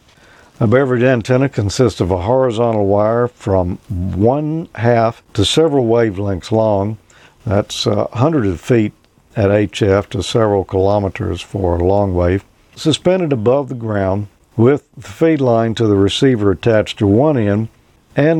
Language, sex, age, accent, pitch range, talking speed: English, male, 50-69, American, 100-125 Hz, 145 wpm